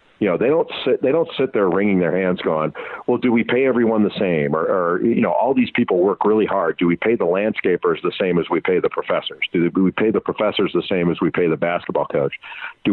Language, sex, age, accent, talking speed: English, male, 50-69, American, 260 wpm